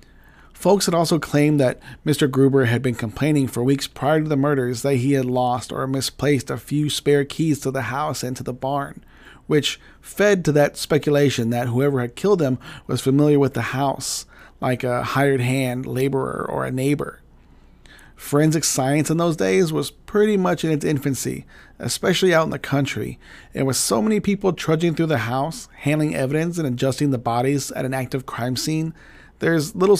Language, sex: English, male